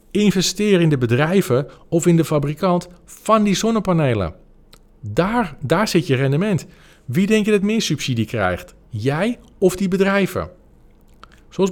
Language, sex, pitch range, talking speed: Dutch, male, 125-175 Hz, 145 wpm